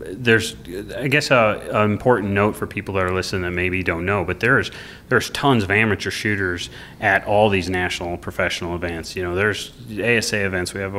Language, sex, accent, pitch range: English, male, American, 90-105 Hz